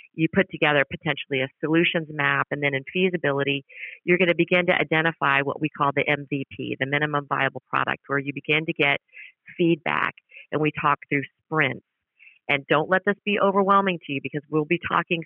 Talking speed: 195 wpm